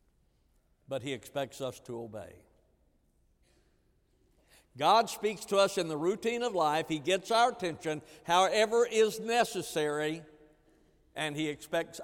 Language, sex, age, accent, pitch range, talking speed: English, male, 60-79, American, 130-170 Hz, 125 wpm